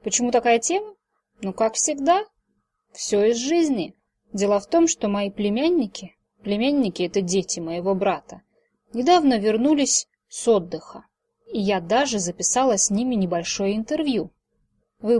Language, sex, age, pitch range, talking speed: Russian, female, 20-39, 200-265 Hz, 130 wpm